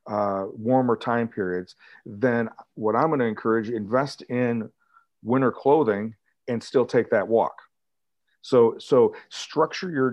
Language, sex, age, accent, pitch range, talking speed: English, male, 40-59, American, 110-125 Hz, 135 wpm